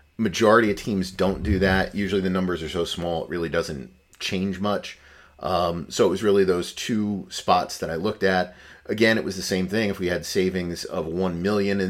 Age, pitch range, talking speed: 30-49, 85-105 Hz, 215 wpm